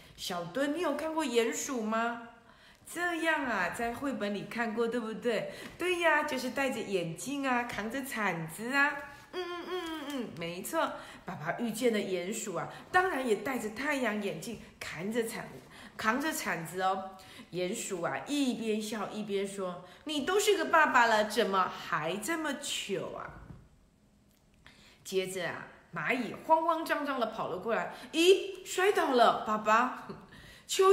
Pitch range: 195-285 Hz